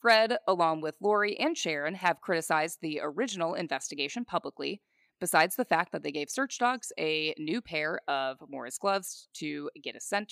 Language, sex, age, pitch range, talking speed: English, female, 20-39, 150-205 Hz, 175 wpm